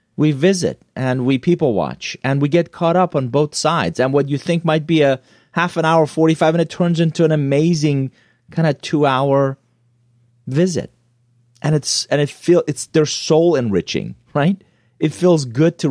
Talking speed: 185 wpm